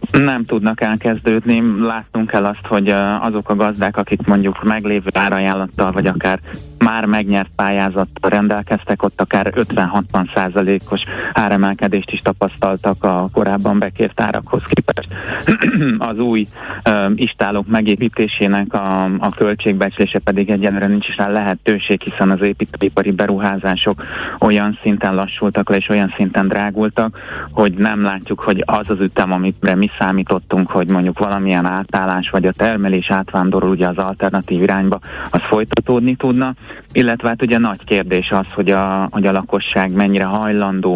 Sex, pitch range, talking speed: male, 95-105 Hz, 135 wpm